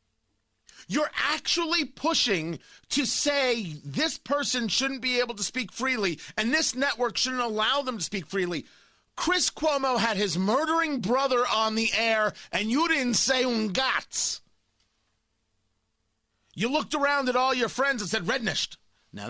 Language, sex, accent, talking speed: English, male, American, 145 wpm